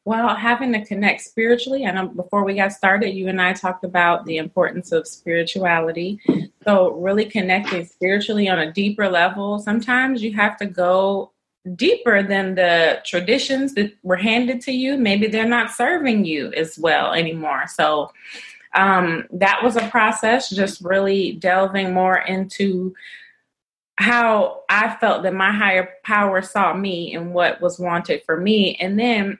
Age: 30-49